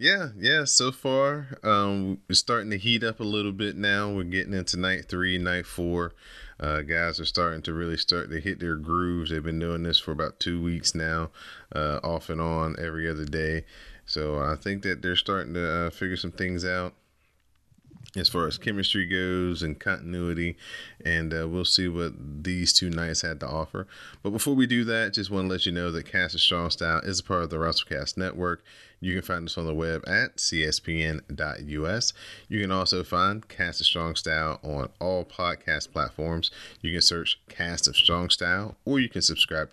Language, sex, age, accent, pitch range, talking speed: English, male, 30-49, American, 80-95 Hz, 200 wpm